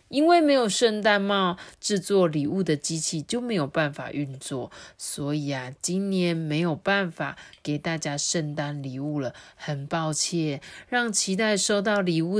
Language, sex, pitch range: Chinese, female, 155-235 Hz